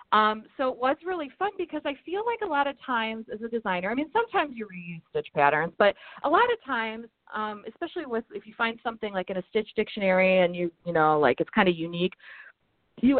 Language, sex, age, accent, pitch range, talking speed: English, female, 30-49, American, 175-225 Hz, 230 wpm